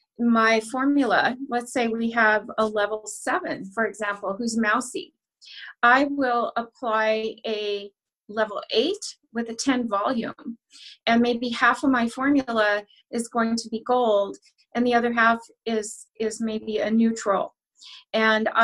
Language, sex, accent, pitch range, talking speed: English, female, American, 220-255 Hz, 140 wpm